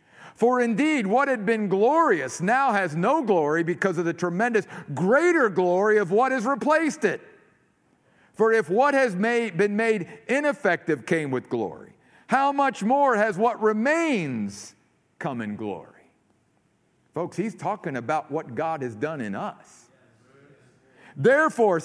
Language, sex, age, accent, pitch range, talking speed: English, male, 50-69, American, 175-260 Hz, 140 wpm